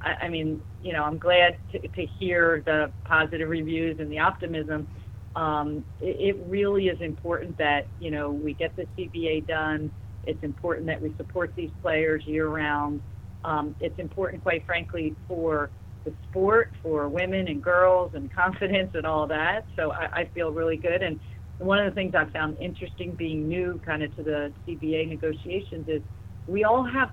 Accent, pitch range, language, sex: American, 145-175 Hz, English, female